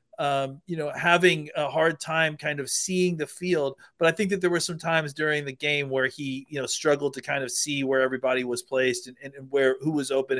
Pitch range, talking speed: 140-165 Hz, 250 wpm